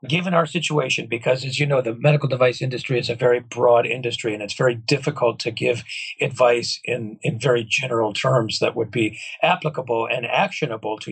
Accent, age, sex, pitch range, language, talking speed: American, 40-59, male, 120-155 Hz, English, 190 wpm